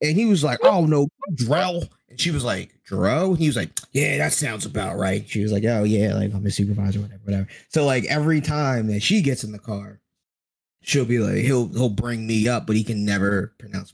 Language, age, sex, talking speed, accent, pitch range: English, 20-39, male, 235 wpm, American, 105-145 Hz